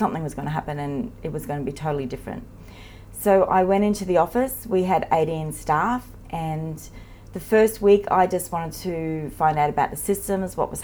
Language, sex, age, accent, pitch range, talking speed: English, female, 30-49, Australian, 145-200 Hz, 210 wpm